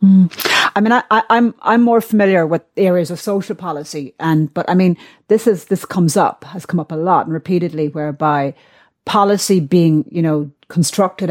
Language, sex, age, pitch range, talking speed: English, female, 30-49, 165-210 Hz, 195 wpm